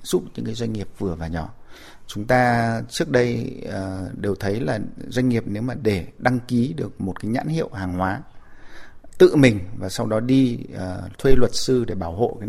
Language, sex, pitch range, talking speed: Vietnamese, male, 95-125 Hz, 200 wpm